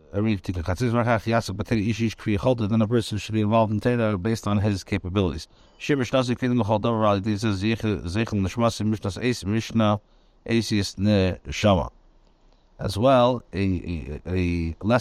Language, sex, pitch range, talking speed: English, male, 95-115 Hz, 75 wpm